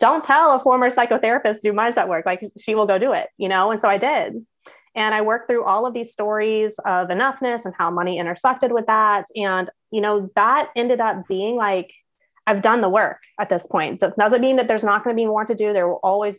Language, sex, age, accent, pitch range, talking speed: English, female, 20-39, American, 190-230 Hz, 245 wpm